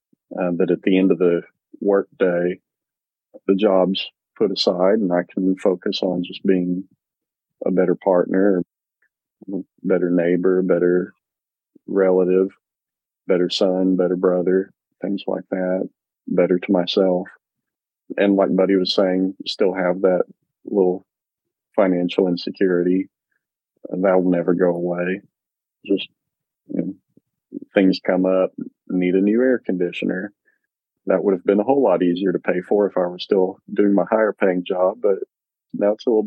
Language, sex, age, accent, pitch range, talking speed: English, male, 40-59, American, 90-100 Hz, 150 wpm